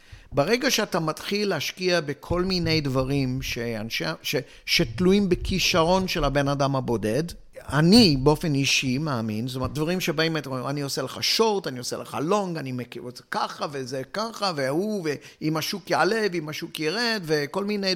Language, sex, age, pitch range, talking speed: Hebrew, male, 50-69, 135-180 Hz, 165 wpm